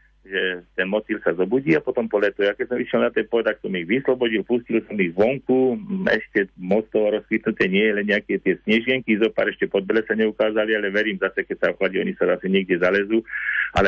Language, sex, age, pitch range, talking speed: Slovak, male, 40-59, 95-115 Hz, 215 wpm